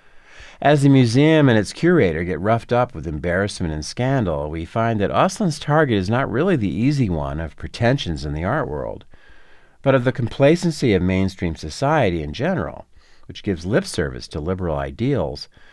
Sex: male